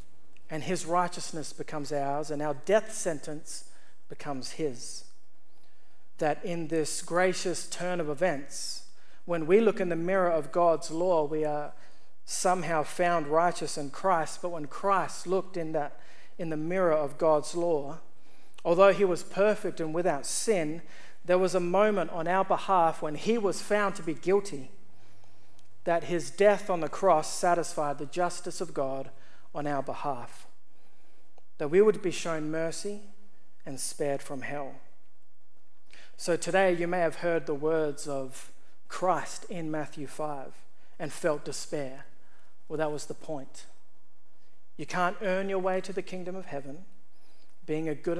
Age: 40-59